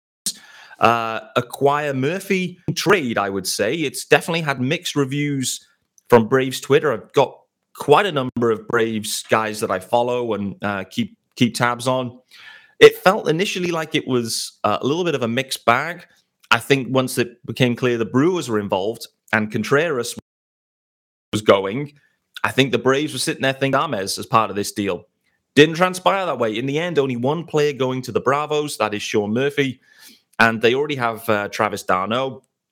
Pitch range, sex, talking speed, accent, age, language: 115-150 Hz, male, 180 wpm, British, 30-49, English